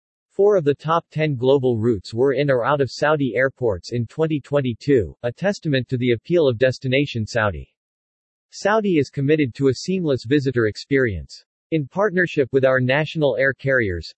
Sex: male